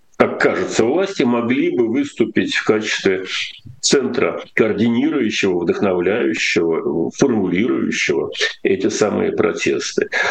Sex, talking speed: male, 85 wpm